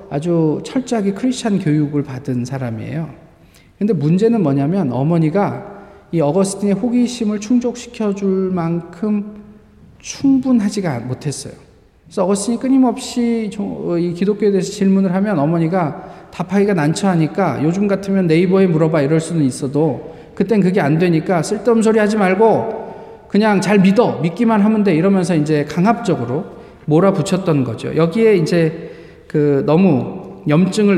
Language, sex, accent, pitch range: Korean, male, native, 155-205 Hz